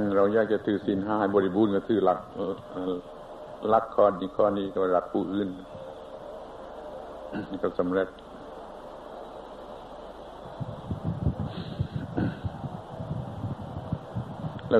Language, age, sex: Thai, 70-89, male